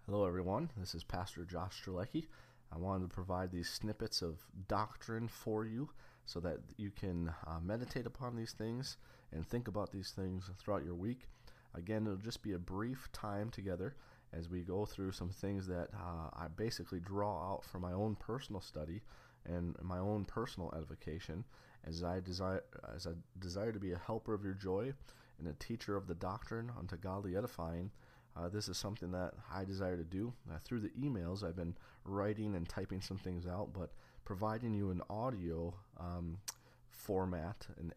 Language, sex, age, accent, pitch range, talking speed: English, male, 30-49, American, 90-110 Hz, 180 wpm